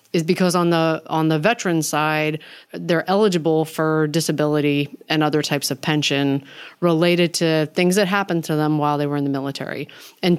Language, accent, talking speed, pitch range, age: English, American, 180 wpm, 155-185 Hz, 30-49